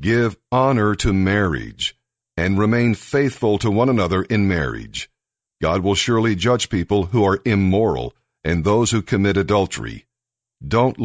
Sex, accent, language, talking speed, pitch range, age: male, American, English, 140 wpm, 100-120 Hz, 50-69